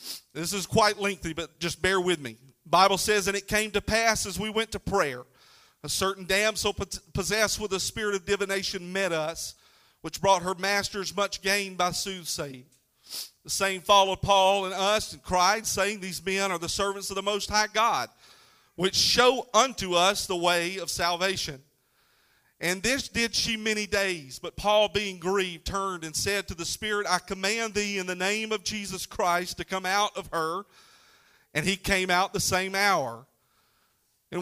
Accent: American